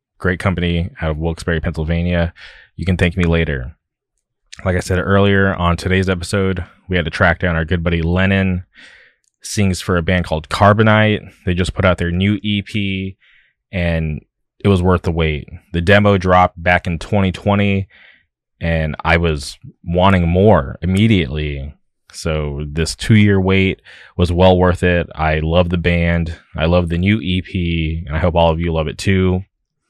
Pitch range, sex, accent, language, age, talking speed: 85-95 Hz, male, American, English, 20-39, 170 wpm